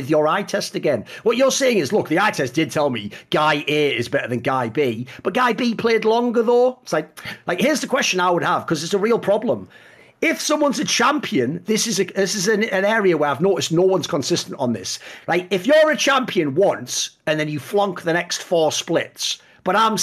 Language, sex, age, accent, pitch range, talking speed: English, male, 40-59, British, 150-235 Hz, 235 wpm